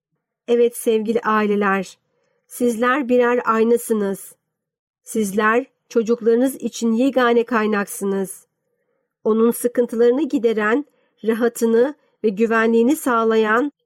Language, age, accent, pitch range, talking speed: Turkish, 50-69, native, 215-250 Hz, 80 wpm